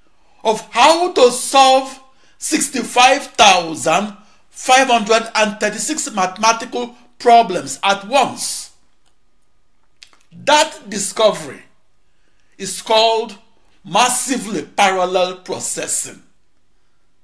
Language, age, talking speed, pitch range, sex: English, 60-79, 55 wpm, 215-280 Hz, male